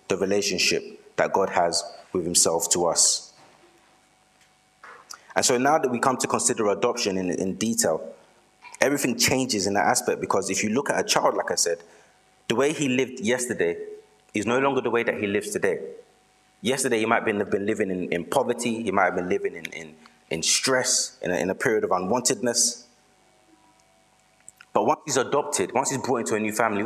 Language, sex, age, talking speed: English, male, 30-49, 190 wpm